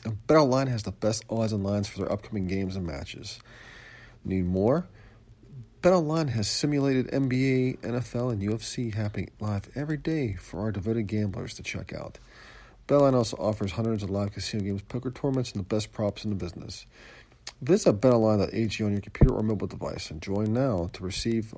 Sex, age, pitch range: male, 40-59, 100-120 Hz